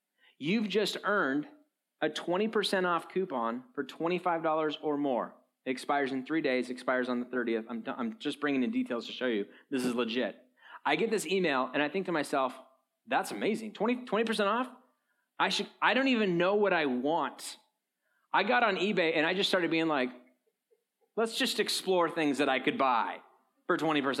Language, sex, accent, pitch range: English, male, American, 185-255 Hz